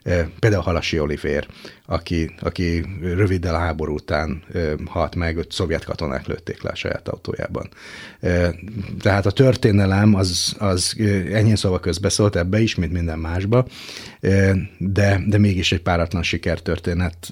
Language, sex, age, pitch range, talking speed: Hungarian, male, 30-49, 85-105 Hz, 130 wpm